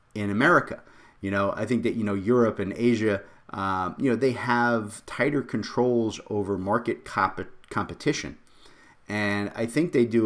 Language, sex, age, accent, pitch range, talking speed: English, male, 30-49, American, 95-115 Hz, 165 wpm